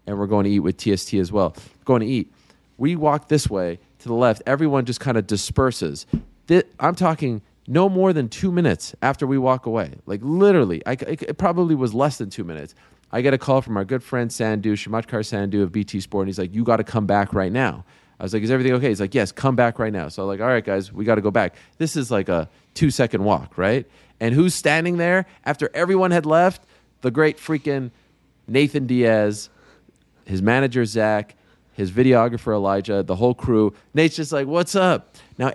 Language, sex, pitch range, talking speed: English, male, 105-160 Hz, 215 wpm